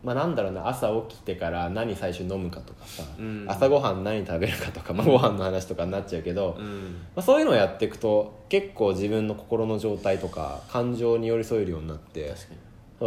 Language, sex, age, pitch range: Japanese, male, 20-39, 95-125 Hz